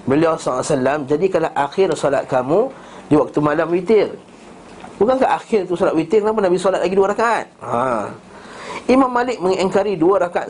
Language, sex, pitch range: Malay, male, 150-195 Hz